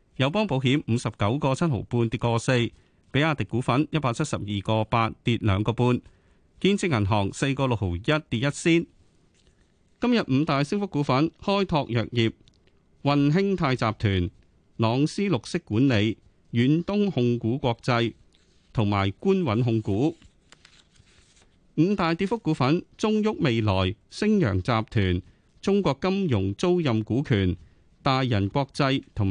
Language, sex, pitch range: Chinese, male, 105-155 Hz